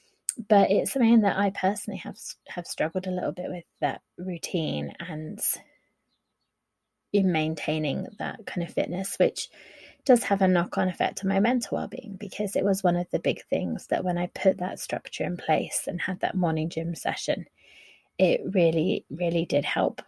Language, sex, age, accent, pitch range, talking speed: English, female, 20-39, British, 175-205 Hz, 175 wpm